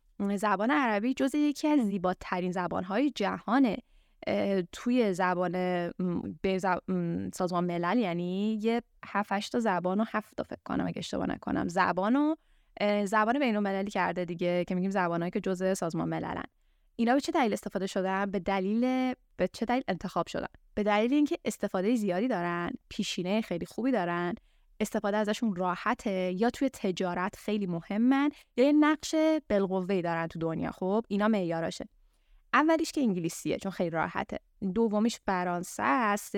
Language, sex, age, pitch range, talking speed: Persian, female, 10-29, 180-230 Hz, 145 wpm